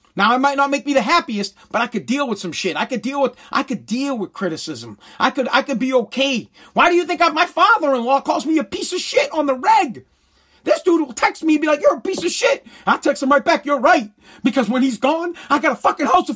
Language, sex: English, male